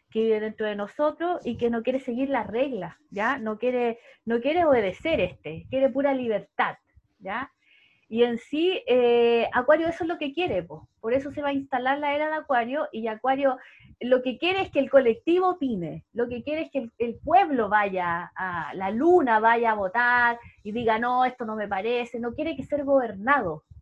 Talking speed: 200 wpm